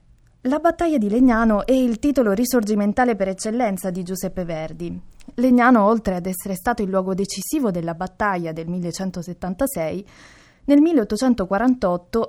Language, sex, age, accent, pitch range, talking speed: Italian, female, 20-39, native, 185-245 Hz, 130 wpm